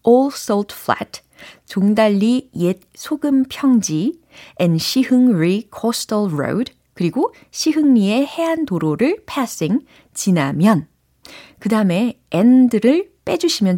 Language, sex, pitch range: Korean, female, 175-270 Hz